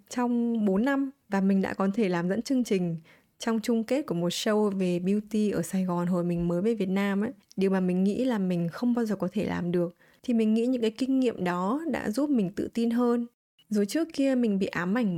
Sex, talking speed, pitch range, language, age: female, 255 wpm, 185-240 Hz, Vietnamese, 20-39